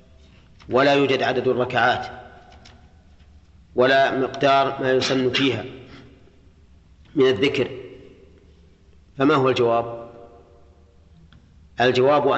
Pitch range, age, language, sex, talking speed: 90-135 Hz, 40-59, Arabic, male, 75 wpm